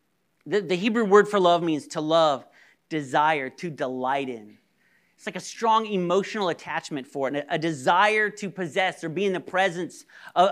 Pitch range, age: 160-200 Hz, 40-59